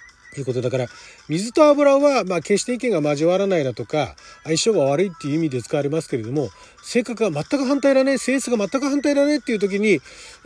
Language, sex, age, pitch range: Japanese, male, 40-59, 145-240 Hz